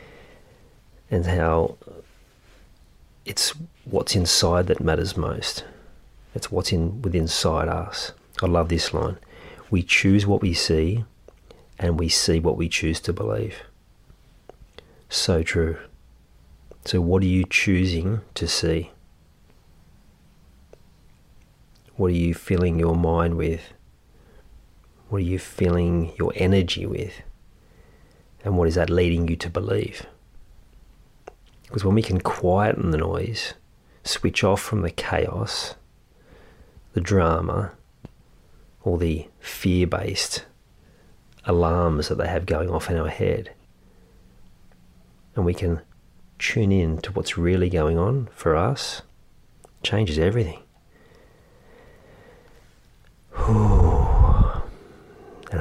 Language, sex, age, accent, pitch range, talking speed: English, male, 40-59, Australian, 80-95 Hz, 110 wpm